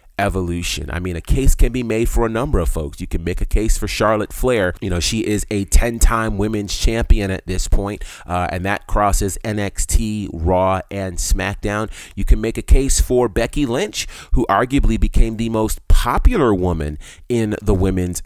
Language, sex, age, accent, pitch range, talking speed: English, male, 30-49, American, 90-125 Hz, 190 wpm